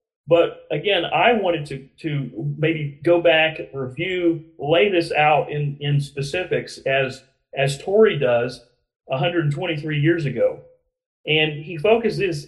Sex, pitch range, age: male, 135-175 Hz, 40-59